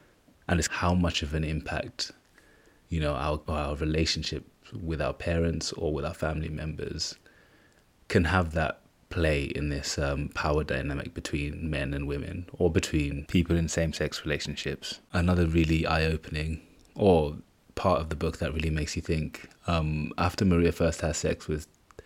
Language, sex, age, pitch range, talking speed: English, male, 20-39, 75-85 Hz, 165 wpm